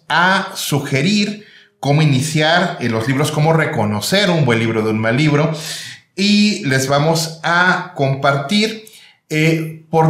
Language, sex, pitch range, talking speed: Spanish, male, 125-170 Hz, 135 wpm